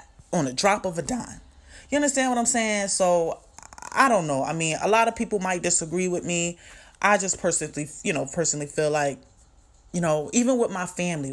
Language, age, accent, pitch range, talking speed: English, 30-49, American, 155-215 Hz, 205 wpm